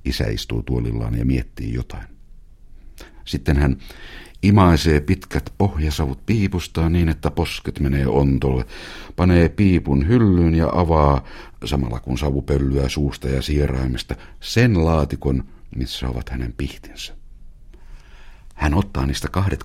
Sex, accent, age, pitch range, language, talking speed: male, native, 60-79, 70-90 Hz, Finnish, 115 wpm